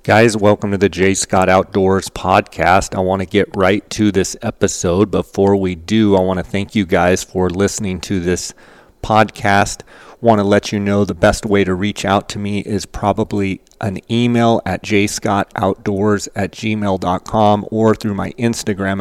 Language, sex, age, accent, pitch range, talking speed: English, male, 30-49, American, 95-105 Hz, 175 wpm